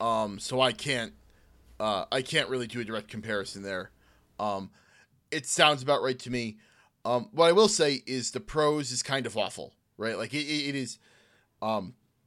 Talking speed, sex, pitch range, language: 180 wpm, male, 125-175 Hz, English